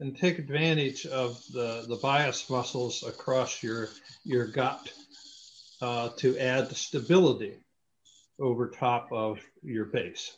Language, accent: English, American